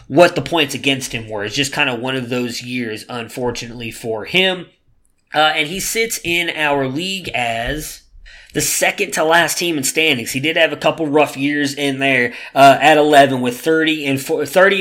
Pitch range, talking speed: 130-160 Hz, 180 wpm